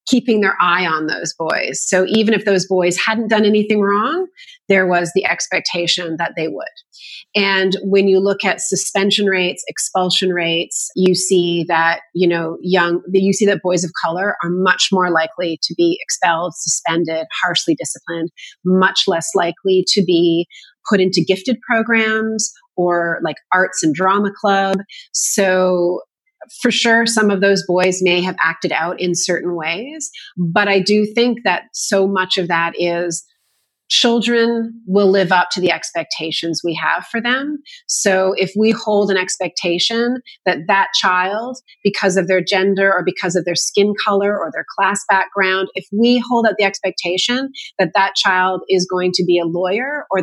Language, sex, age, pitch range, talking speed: English, female, 30-49, 175-215 Hz, 170 wpm